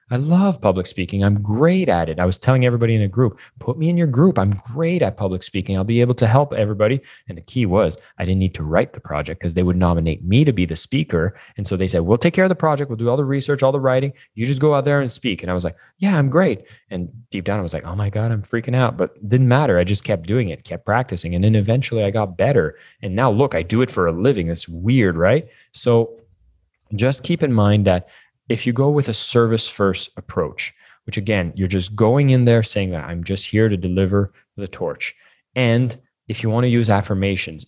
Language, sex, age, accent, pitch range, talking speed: English, male, 20-39, American, 95-125 Hz, 255 wpm